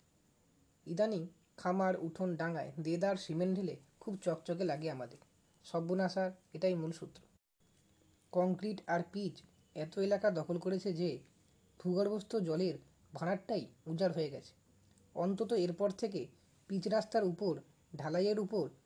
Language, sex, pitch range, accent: Bengali, female, 160-200 Hz, native